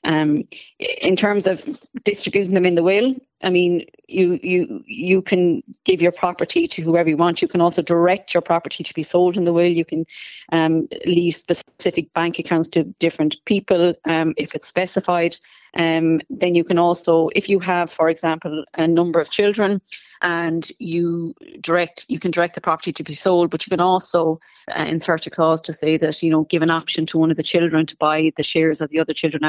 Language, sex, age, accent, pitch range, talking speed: English, female, 30-49, Irish, 160-180 Hz, 210 wpm